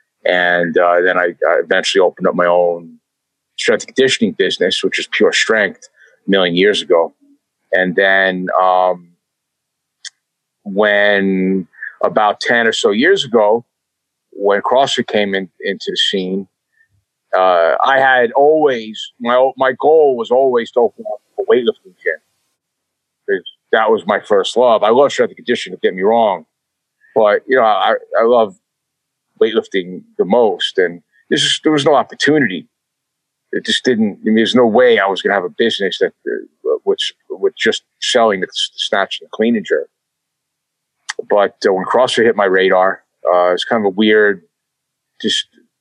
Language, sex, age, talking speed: English, male, 40-59, 165 wpm